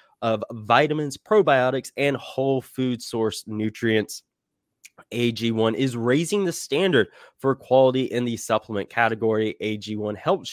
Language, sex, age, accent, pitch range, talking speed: English, male, 20-39, American, 105-135 Hz, 120 wpm